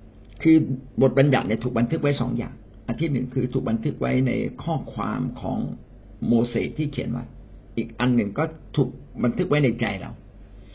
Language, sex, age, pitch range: Thai, male, 60-79, 110-135 Hz